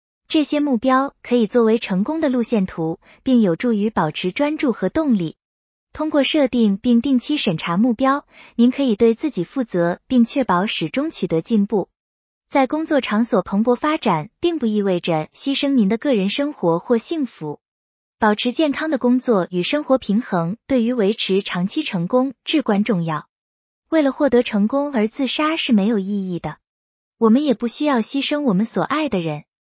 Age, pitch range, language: 20-39, 200-280 Hz, English